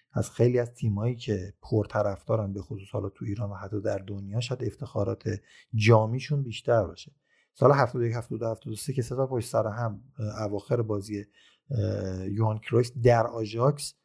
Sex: male